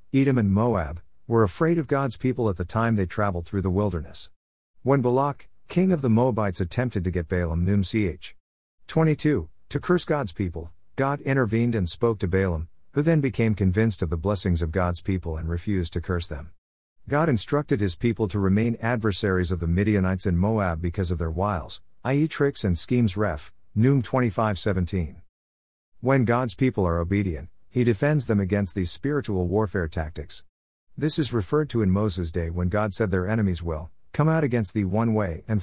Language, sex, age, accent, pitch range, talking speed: English, male, 50-69, American, 90-115 Hz, 185 wpm